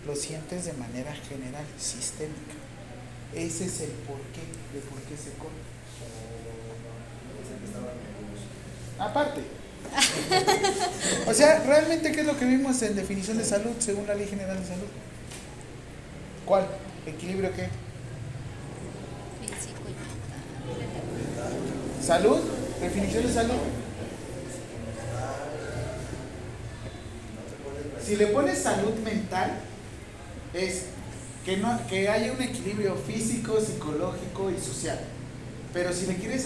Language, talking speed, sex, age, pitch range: Spanish, 100 wpm, male, 30-49, 125-195 Hz